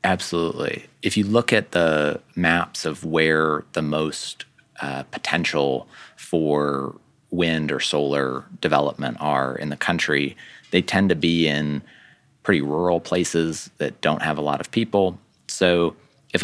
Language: English